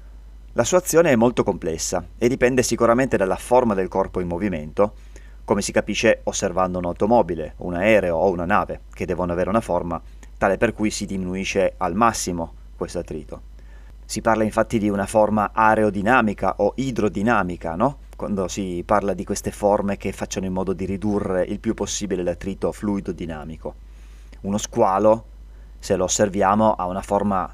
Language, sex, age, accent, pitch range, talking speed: Italian, male, 30-49, native, 80-110 Hz, 160 wpm